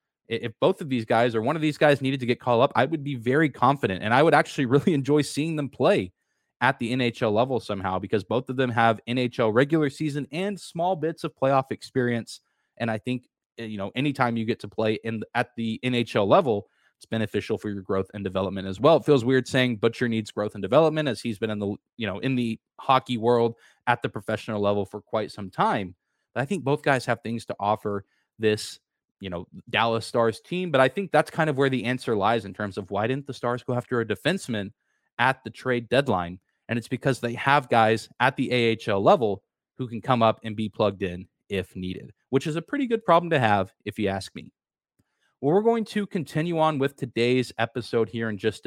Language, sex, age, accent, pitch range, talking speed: English, male, 20-39, American, 110-145 Hz, 225 wpm